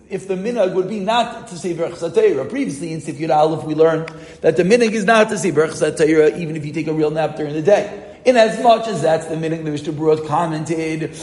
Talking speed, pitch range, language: 235 wpm, 160-215 Hz, English